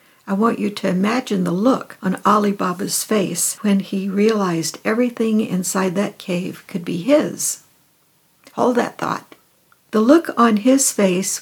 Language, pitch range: English, 190-235 Hz